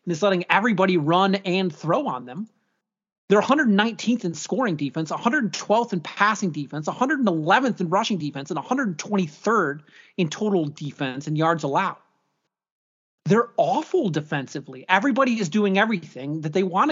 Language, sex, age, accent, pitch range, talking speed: English, male, 30-49, American, 165-215 Hz, 140 wpm